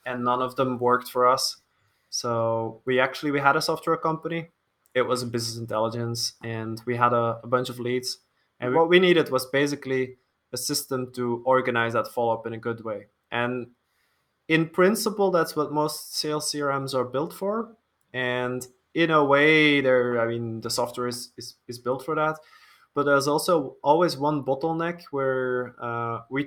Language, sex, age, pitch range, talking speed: English, male, 20-39, 120-150 Hz, 180 wpm